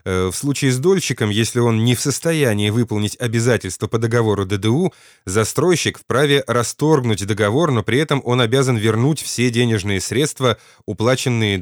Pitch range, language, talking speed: 105-130 Hz, Russian, 145 wpm